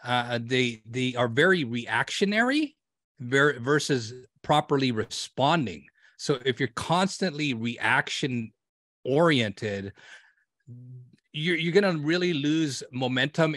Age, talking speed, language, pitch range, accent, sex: 30-49, 95 wpm, English, 125-160 Hz, American, male